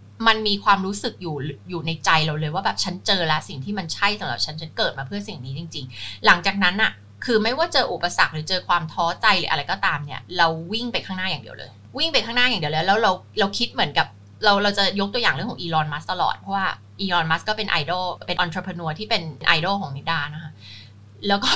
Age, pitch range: 20-39, 155-210 Hz